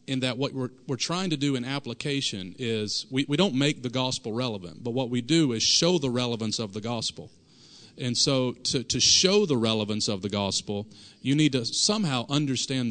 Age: 40-59